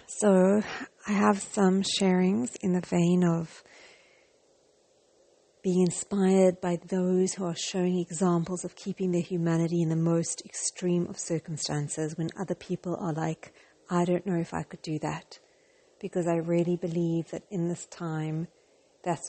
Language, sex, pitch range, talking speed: English, female, 170-210 Hz, 150 wpm